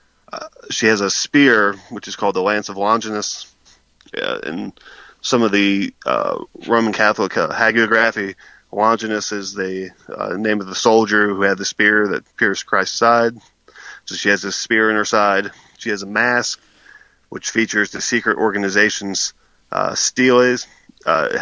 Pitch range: 100-115 Hz